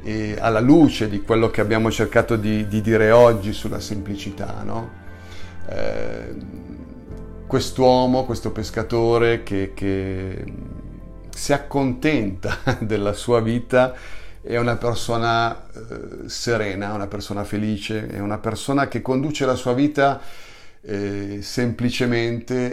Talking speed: 115 wpm